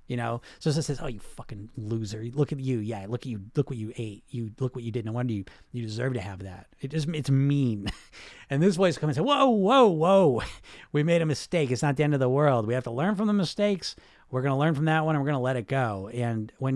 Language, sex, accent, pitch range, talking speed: English, male, American, 120-155 Hz, 275 wpm